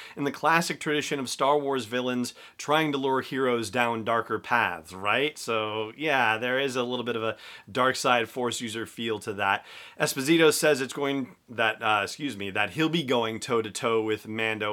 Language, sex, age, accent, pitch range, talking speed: English, male, 30-49, American, 110-135 Hz, 190 wpm